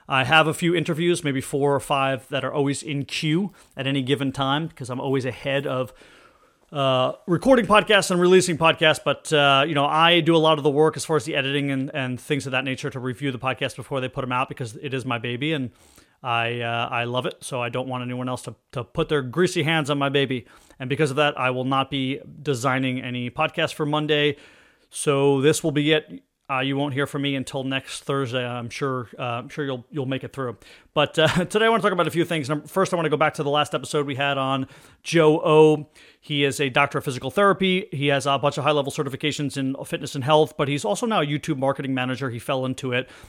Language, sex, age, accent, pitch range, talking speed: English, male, 30-49, American, 130-155 Hz, 250 wpm